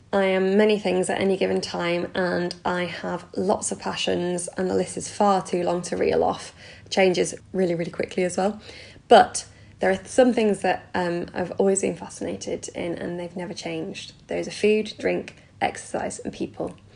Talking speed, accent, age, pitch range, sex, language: 190 wpm, British, 10-29, 170-200 Hz, female, English